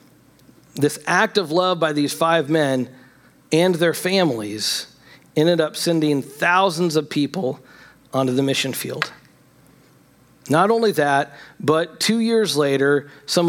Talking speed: 130 wpm